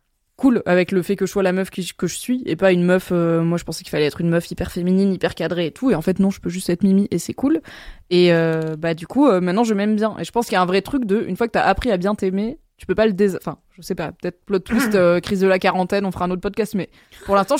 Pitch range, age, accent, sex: 180-220 Hz, 20-39, French, female